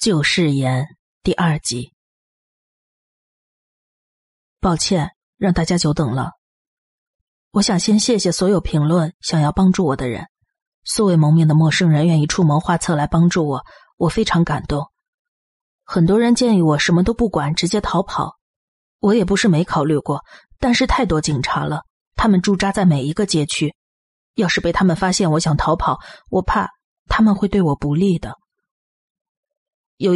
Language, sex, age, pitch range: Chinese, female, 30-49, 155-205 Hz